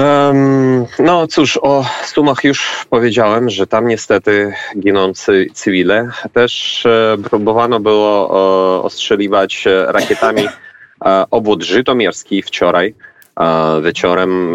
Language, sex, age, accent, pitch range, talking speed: Polish, male, 30-49, native, 80-110 Hz, 85 wpm